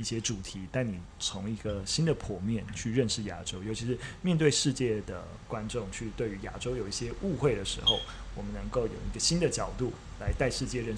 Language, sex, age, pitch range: Chinese, male, 20-39, 105-135 Hz